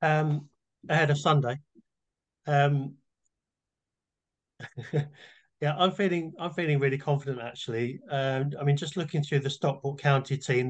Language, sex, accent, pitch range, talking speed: English, male, British, 130-145 Hz, 125 wpm